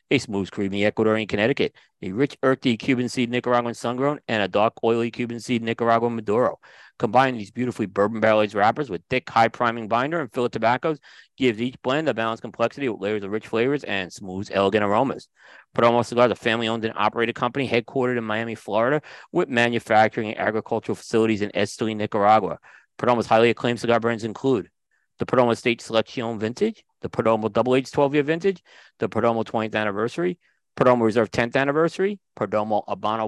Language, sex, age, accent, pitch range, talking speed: English, male, 30-49, American, 110-135 Hz, 170 wpm